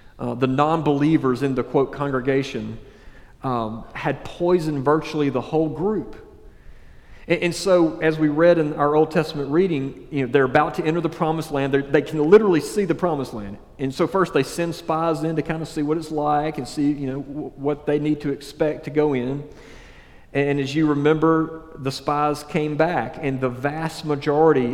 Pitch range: 140-170 Hz